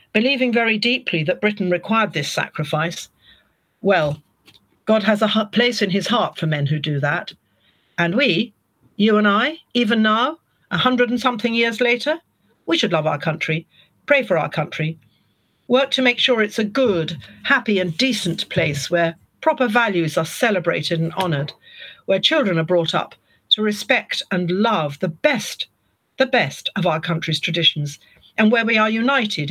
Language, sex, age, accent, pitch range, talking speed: English, female, 50-69, British, 160-225 Hz, 170 wpm